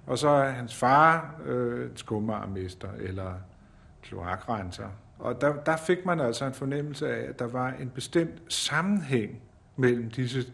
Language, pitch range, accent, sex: Danish, 110-140 Hz, native, male